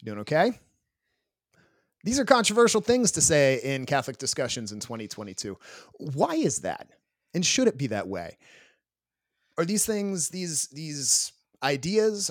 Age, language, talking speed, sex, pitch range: 30-49, English, 135 wpm, male, 115-165 Hz